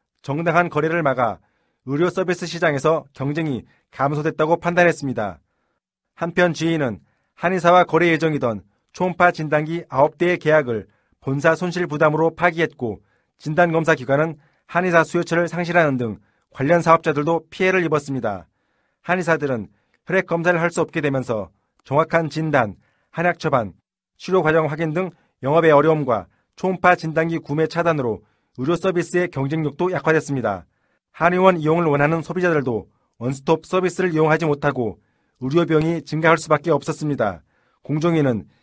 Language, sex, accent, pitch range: Korean, male, native, 140-170 Hz